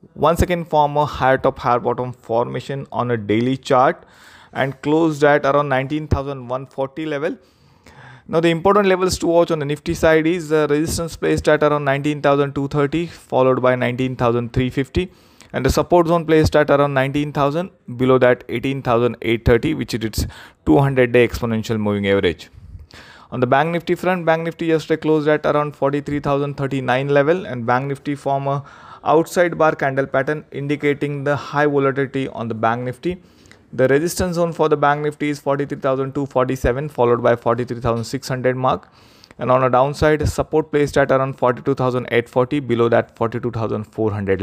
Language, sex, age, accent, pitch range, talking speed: English, male, 20-39, Indian, 125-150 Hz, 155 wpm